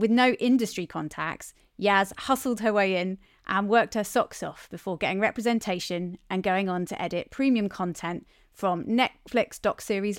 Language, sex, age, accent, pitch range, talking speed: English, female, 30-49, British, 180-225 Hz, 165 wpm